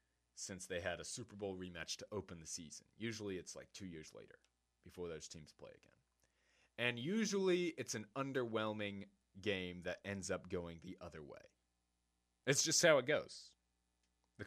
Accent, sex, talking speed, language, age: American, male, 170 wpm, English, 30-49